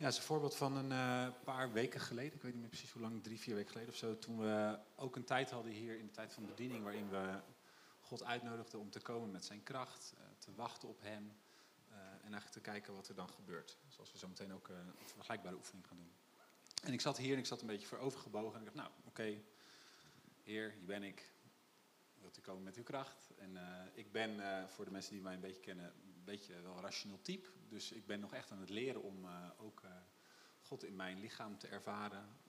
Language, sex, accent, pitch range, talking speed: Dutch, male, Dutch, 100-130 Hz, 255 wpm